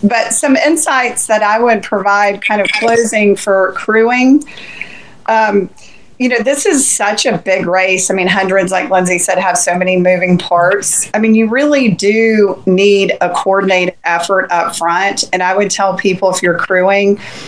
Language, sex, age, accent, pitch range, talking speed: English, female, 40-59, American, 190-220 Hz, 175 wpm